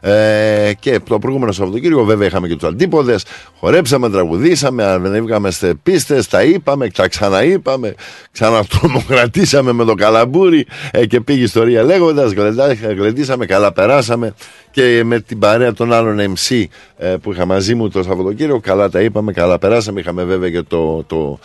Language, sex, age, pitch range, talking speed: Greek, male, 50-69, 100-140 Hz, 145 wpm